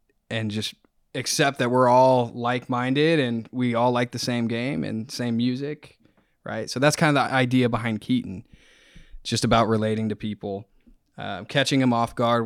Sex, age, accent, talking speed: male, 20-39, American, 175 wpm